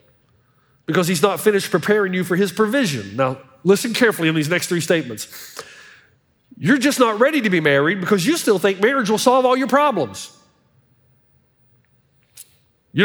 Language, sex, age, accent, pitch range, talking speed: English, male, 40-59, American, 170-270 Hz, 160 wpm